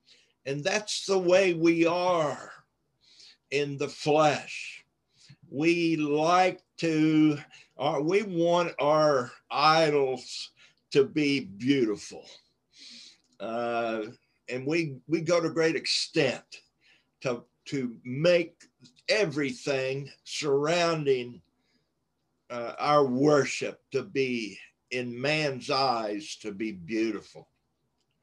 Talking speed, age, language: 95 wpm, 60-79, English